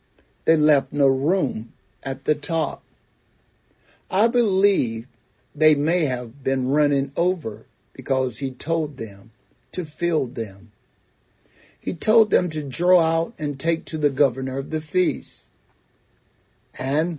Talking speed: 130 wpm